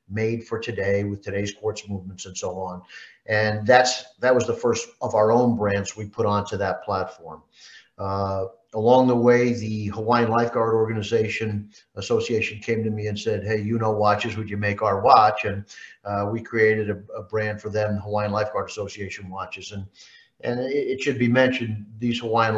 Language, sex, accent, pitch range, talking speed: English, male, American, 105-120 Hz, 185 wpm